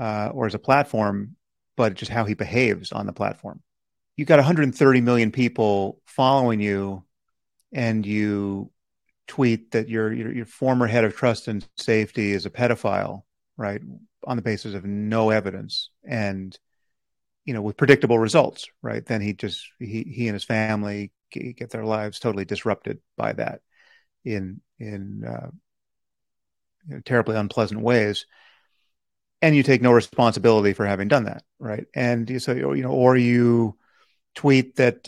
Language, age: English, 40-59